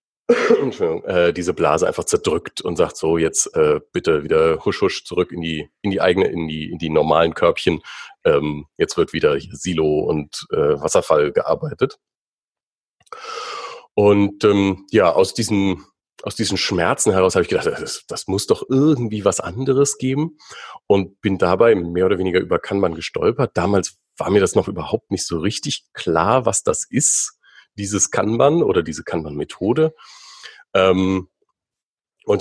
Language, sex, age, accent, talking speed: German, male, 40-59, German, 155 wpm